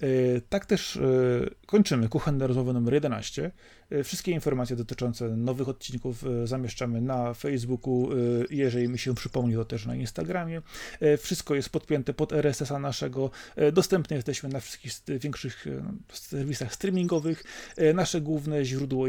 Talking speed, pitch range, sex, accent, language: 125 wpm, 120-150 Hz, male, native, Polish